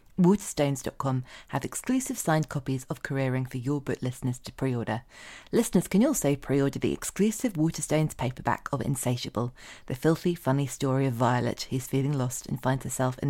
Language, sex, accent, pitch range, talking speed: English, female, British, 125-155 Hz, 165 wpm